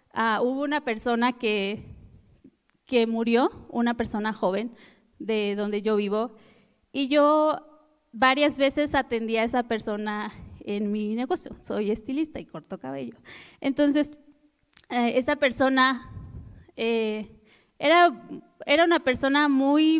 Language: Spanish